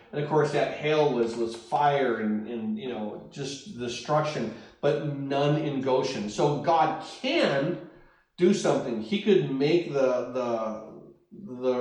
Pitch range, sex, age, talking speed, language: 135-175 Hz, male, 40-59, 145 wpm, English